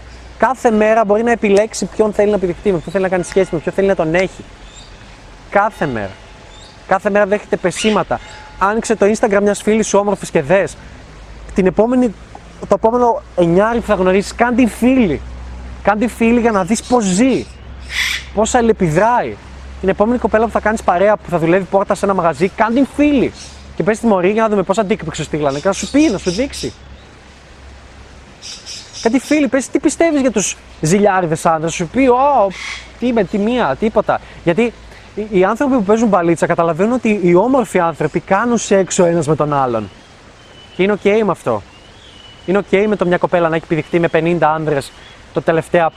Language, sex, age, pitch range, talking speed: Greek, male, 20-39, 165-215 Hz, 180 wpm